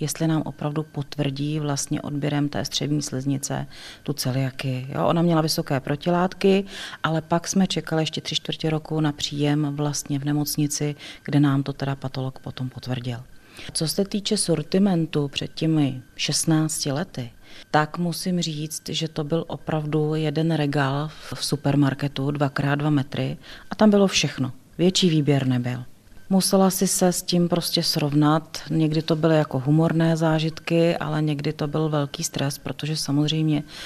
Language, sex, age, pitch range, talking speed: Czech, female, 40-59, 145-165 Hz, 150 wpm